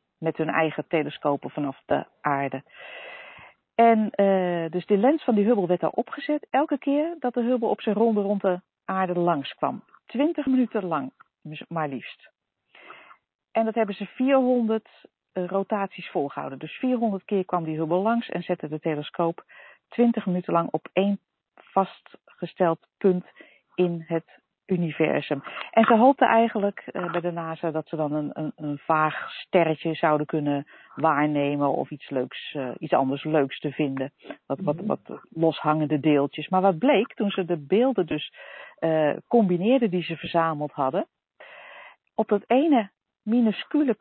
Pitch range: 160-230 Hz